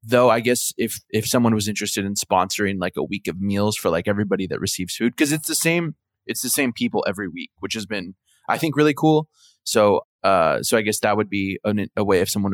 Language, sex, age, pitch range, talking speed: English, male, 20-39, 100-120 Hz, 245 wpm